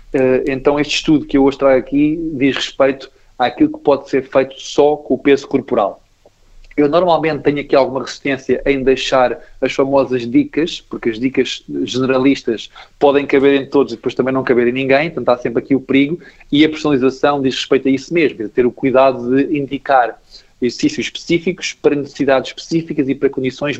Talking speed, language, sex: 185 wpm, Portuguese, male